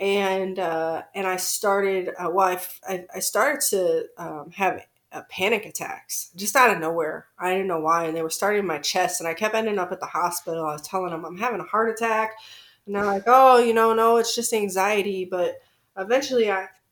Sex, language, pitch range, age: female, English, 175-205 Hz, 20-39